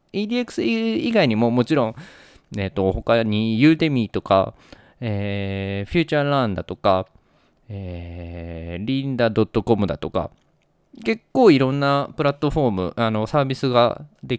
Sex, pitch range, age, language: male, 105-155 Hz, 20-39, Japanese